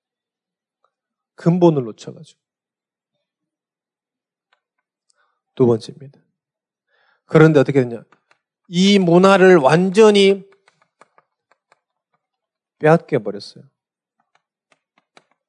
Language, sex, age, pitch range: Korean, male, 40-59, 135-210 Hz